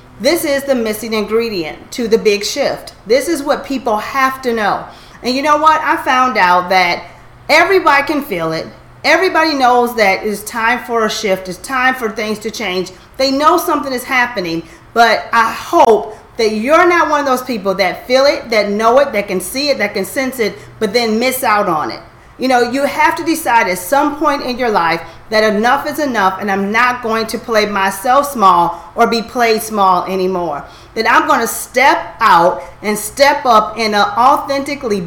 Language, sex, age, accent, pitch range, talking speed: English, female, 40-59, American, 200-270 Hz, 200 wpm